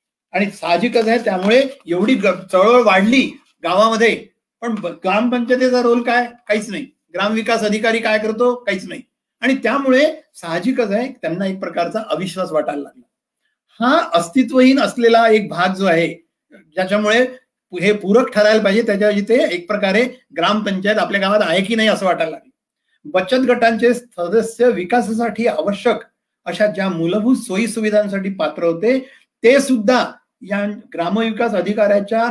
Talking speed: 135 wpm